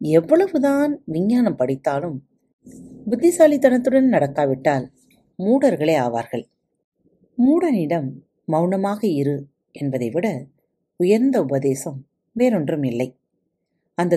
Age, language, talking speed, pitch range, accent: 40-59, Tamil, 70 wpm, 140-235 Hz, native